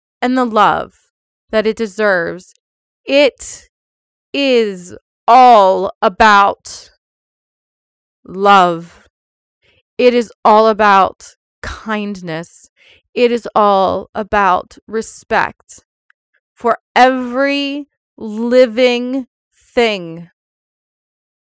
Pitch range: 185-235 Hz